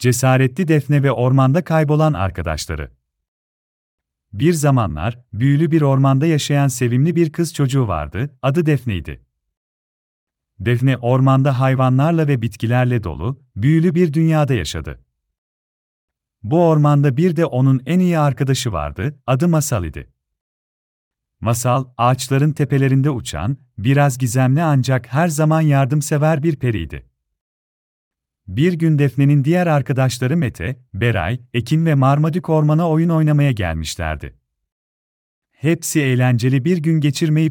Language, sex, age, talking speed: Turkish, male, 40-59, 115 wpm